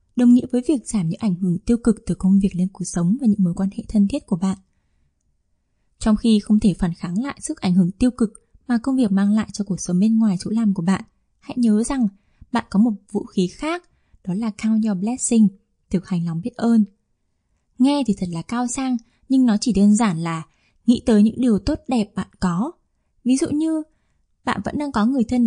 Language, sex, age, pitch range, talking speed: Vietnamese, female, 10-29, 190-245 Hz, 235 wpm